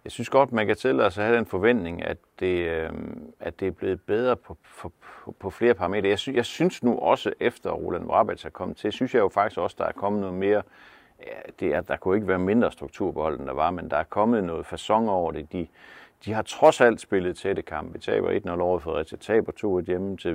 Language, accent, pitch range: Danish, native, 95-120 Hz